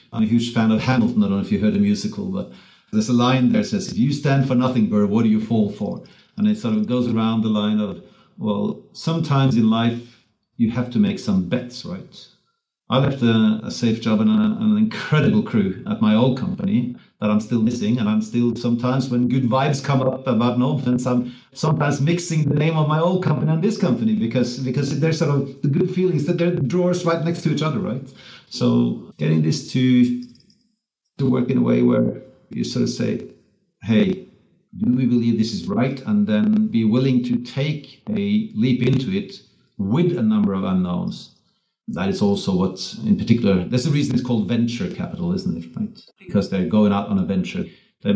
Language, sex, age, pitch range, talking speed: English, male, 50-69, 120-195 Hz, 215 wpm